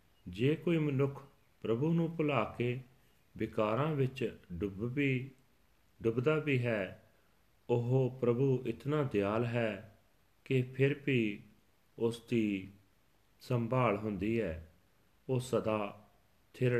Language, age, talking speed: Punjabi, 40-59, 105 wpm